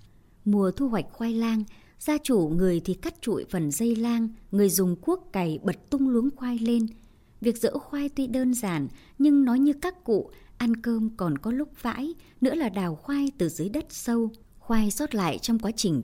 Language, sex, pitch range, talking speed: Vietnamese, male, 180-255 Hz, 200 wpm